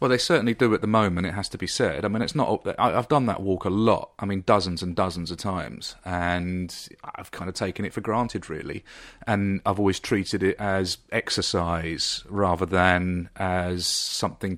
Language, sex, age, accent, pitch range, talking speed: English, male, 30-49, British, 90-110 Hz, 200 wpm